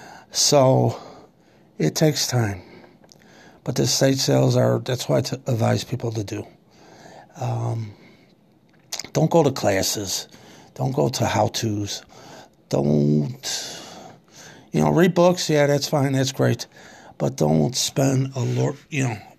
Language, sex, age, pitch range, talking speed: English, male, 50-69, 110-145 Hz, 130 wpm